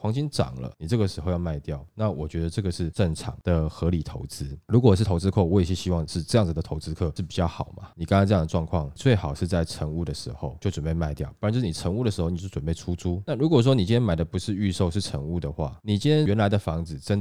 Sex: male